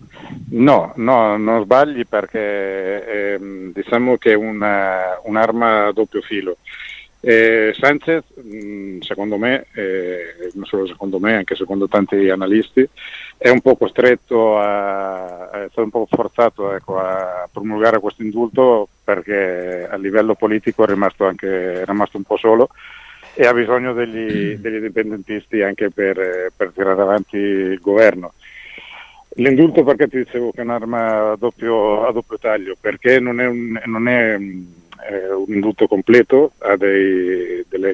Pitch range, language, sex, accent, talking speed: 95-115 Hz, Italian, male, native, 140 wpm